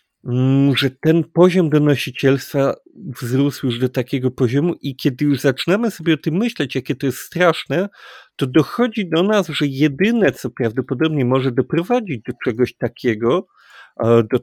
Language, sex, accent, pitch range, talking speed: Polish, male, native, 125-155 Hz, 145 wpm